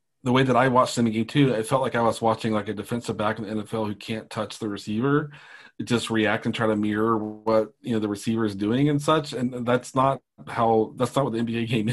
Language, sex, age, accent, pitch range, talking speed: English, male, 30-49, American, 110-135 Hz, 255 wpm